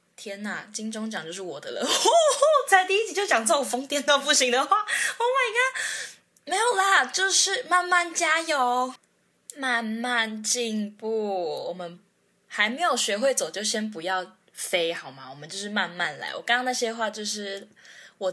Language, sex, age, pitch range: Chinese, female, 10-29, 180-265 Hz